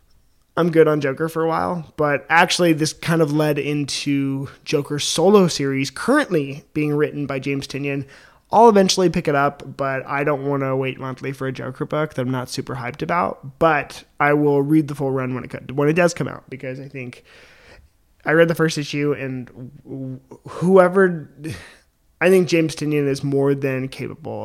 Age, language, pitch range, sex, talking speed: 20-39, English, 135-170 Hz, male, 195 wpm